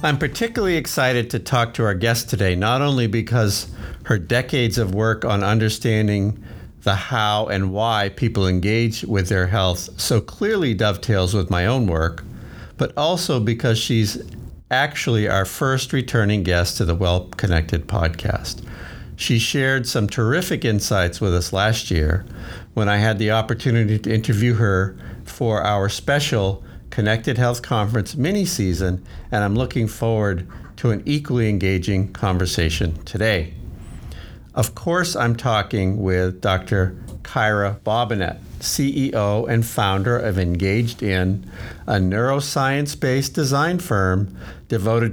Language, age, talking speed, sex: English, 50-69, 135 wpm, male